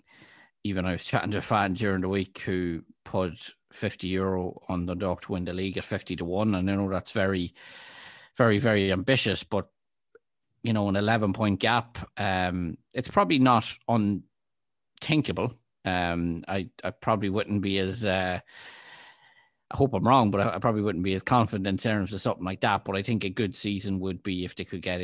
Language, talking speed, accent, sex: English, 195 wpm, Irish, male